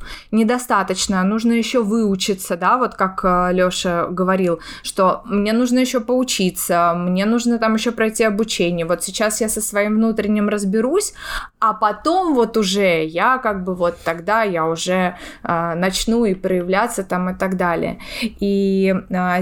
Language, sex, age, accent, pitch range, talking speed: Russian, female, 20-39, native, 190-230 Hz, 150 wpm